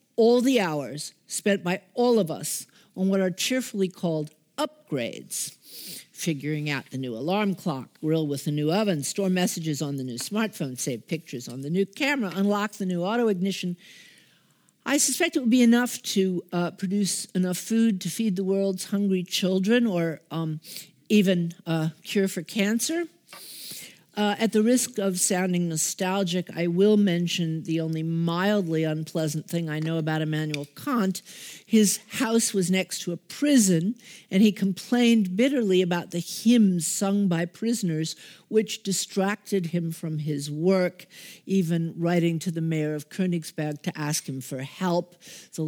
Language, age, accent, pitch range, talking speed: Dutch, 50-69, American, 160-210 Hz, 160 wpm